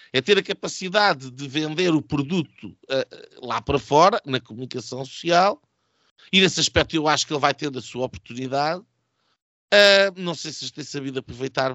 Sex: male